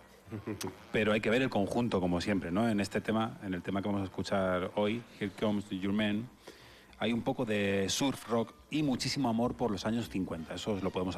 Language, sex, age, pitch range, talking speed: Spanish, male, 30-49, 95-110 Hz, 220 wpm